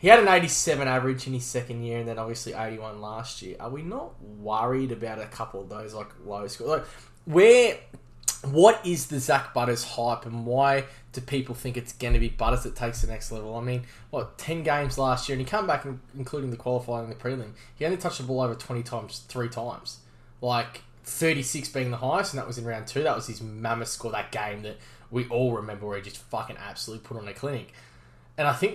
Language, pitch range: English, 115-135 Hz